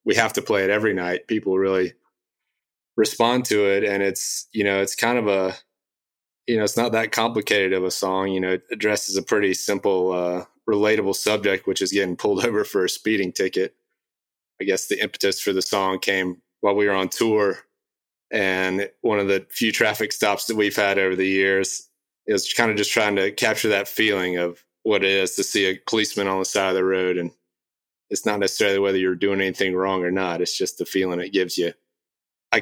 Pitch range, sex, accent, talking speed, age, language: 90-100 Hz, male, American, 215 wpm, 30-49, English